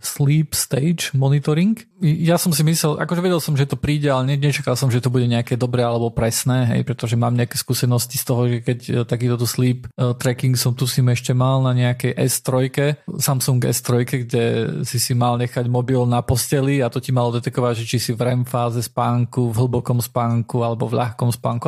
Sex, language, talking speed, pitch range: male, Slovak, 200 wpm, 120-140 Hz